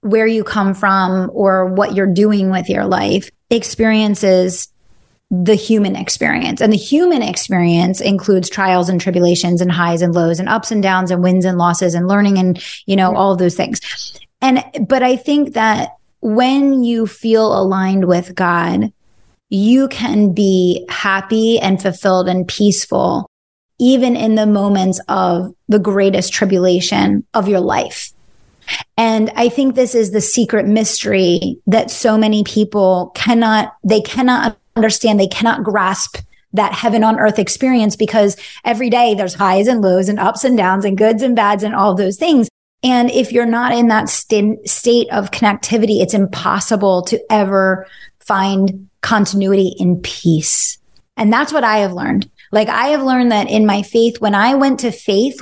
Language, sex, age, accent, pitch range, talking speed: English, female, 20-39, American, 190-225 Hz, 165 wpm